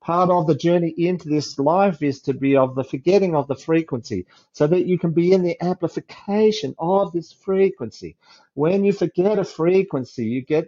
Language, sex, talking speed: English, male, 190 wpm